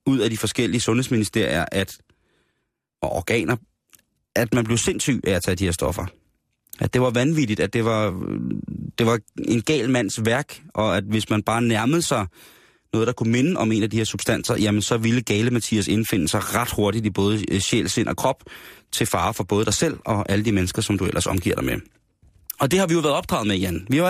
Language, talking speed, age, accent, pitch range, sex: Danish, 225 wpm, 30-49, native, 105-125 Hz, male